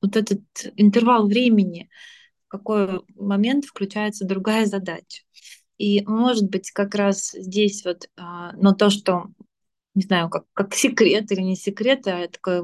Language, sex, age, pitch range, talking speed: Russian, female, 20-39, 185-220 Hz, 145 wpm